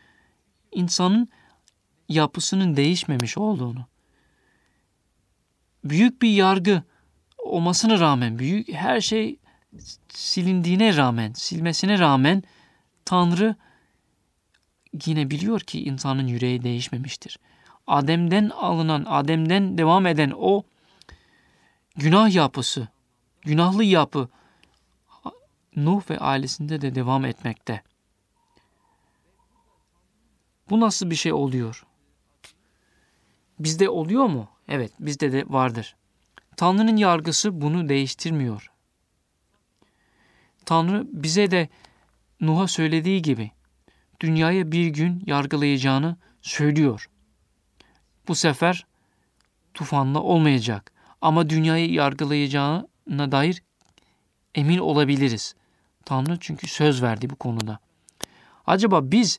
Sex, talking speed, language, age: male, 85 wpm, Turkish, 40-59